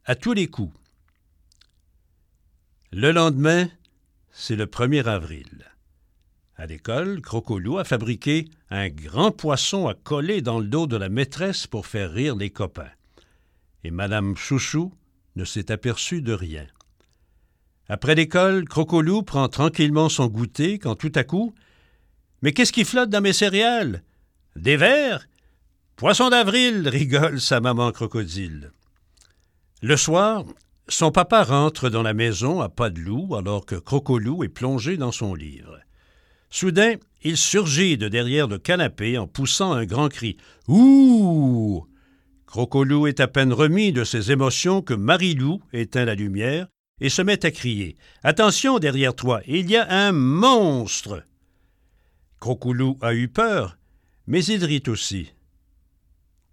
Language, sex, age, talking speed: French, male, 60-79, 145 wpm